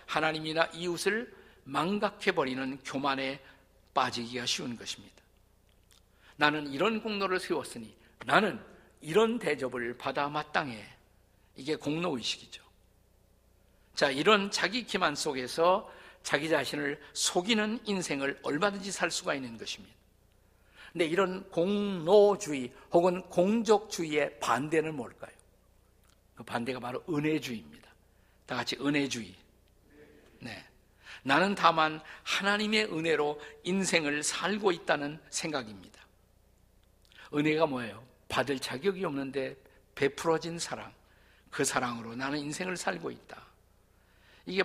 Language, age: Korean, 50-69